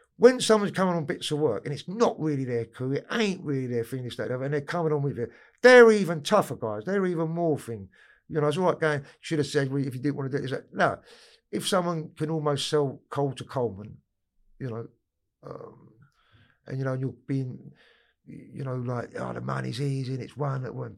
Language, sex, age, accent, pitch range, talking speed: English, male, 50-69, British, 120-160 Hz, 235 wpm